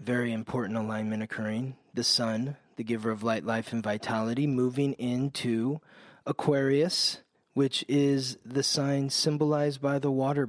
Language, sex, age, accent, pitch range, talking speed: English, male, 30-49, American, 120-150 Hz, 135 wpm